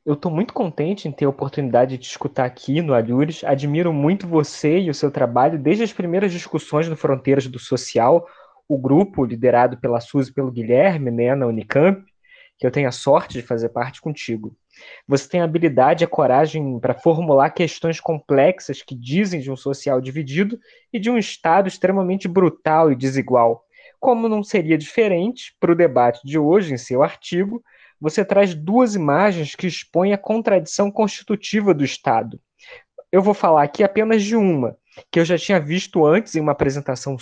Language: Portuguese